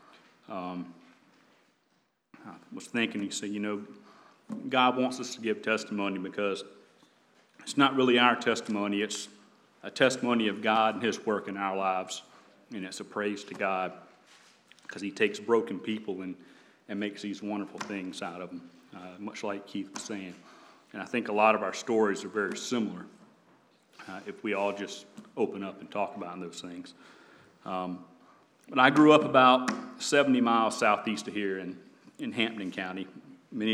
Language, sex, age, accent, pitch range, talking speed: English, male, 40-59, American, 95-110 Hz, 165 wpm